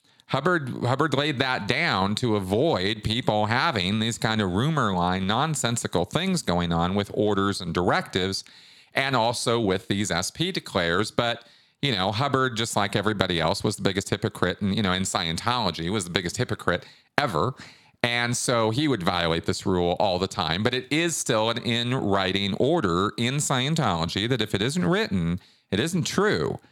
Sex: male